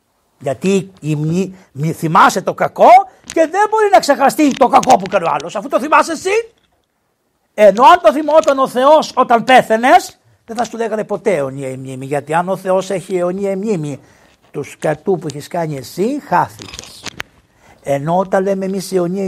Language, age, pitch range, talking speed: Greek, 60-79, 145-205 Hz, 175 wpm